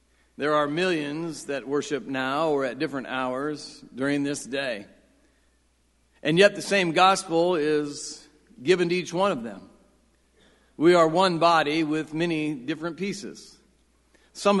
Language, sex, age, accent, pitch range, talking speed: English, male, 50-69, American, 145-195 Hz, 140 wpm